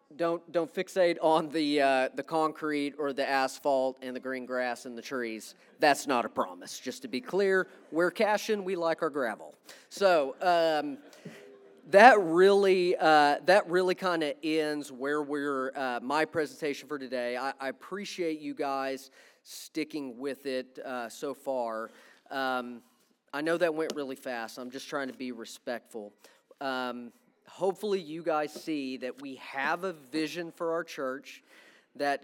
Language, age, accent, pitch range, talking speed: English, 40-59, American, 135-180 Hz, 160 wpm